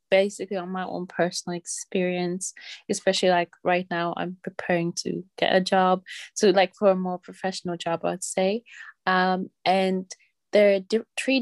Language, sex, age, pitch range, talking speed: English, female, 20-39, 185-205 Hz, 160 wpm